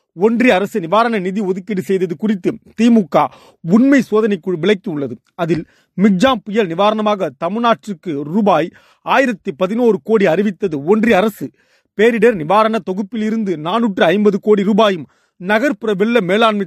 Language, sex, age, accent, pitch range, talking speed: Tamil, male, 30-49, native, 190-225 Hz, 95 wpm